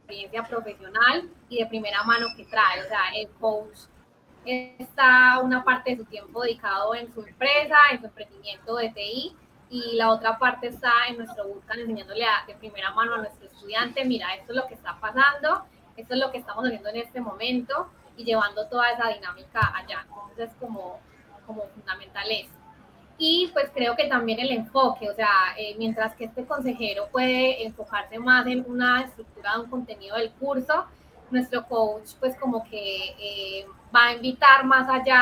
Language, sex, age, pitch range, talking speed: Spanish, female, 20-39, 215-250 Hz, 175 wpm